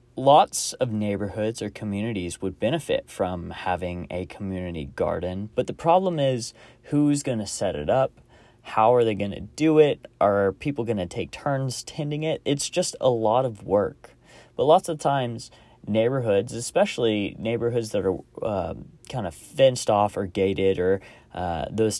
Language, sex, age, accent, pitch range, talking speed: English, male, 20-39, American, 95-125 Hz, 170 wpm